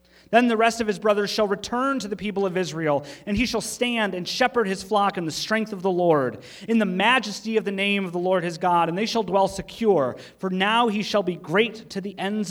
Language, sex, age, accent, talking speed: English, male, 30-49, American, 250 wpm